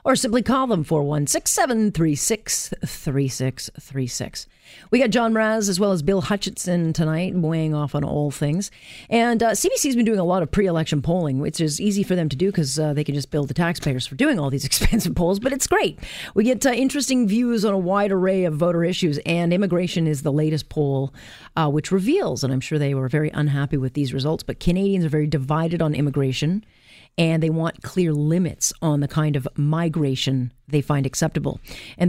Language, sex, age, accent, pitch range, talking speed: English, female, 40-59, American, 140-180 Hz, 195 wpm